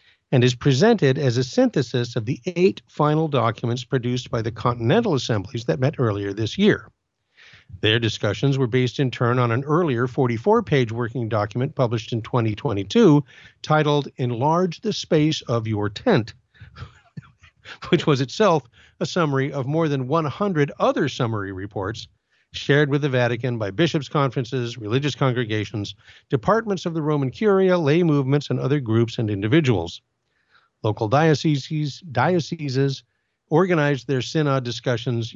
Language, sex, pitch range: English, male, 115-150 Hz